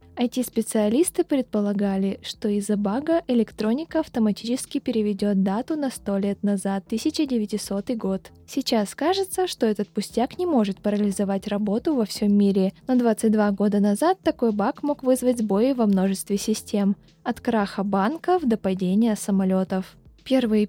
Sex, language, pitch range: female, Russian, 205-250 Hz